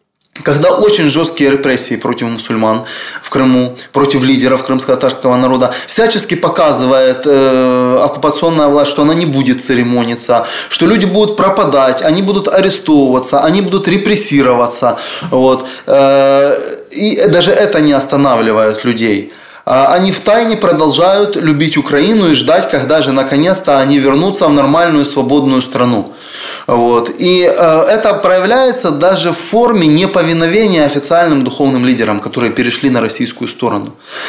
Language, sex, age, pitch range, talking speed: Russian, male, 20-39, 135-195 Hz, 130 wpm